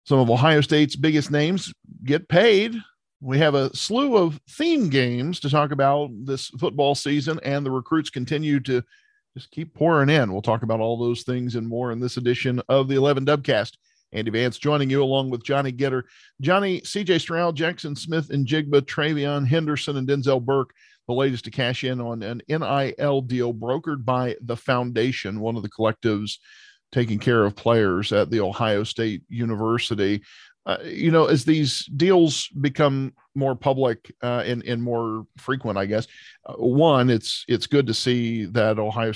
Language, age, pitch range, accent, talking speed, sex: English, 50-69, 115-145 Hz, American, 180 wpm, male